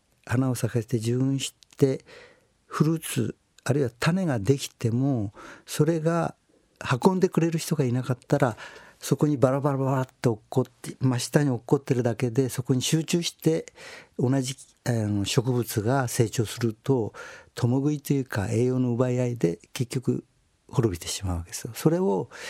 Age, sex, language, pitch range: 60-79, male, Japanese, 115-155 Hz